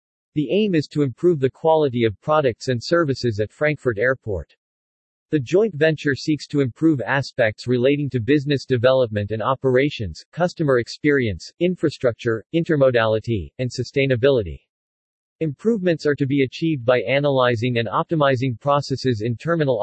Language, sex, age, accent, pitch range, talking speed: English, male, 40-59, American, 120-150 Hz, 135 wpm